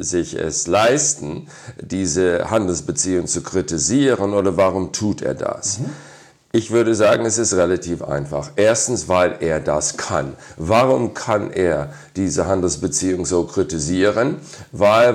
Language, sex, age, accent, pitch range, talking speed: German, male, 50-69, German, 90-120 Hz, 125 wpm